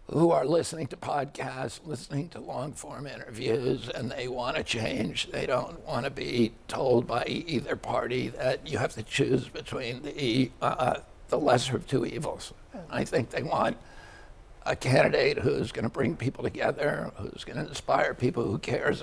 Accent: American